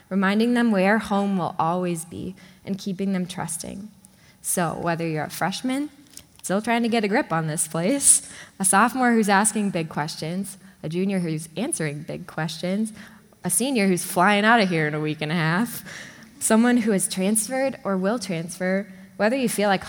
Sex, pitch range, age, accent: female, 175-215 Hz, 10-29, American